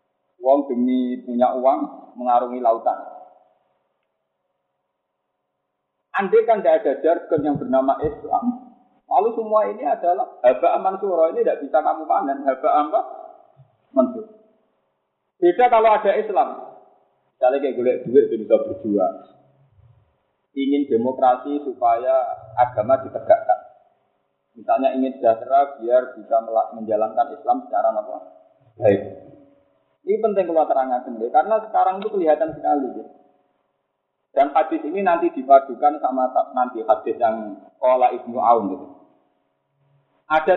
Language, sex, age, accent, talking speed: Indonesian, male, 40-59, native, 115 wpm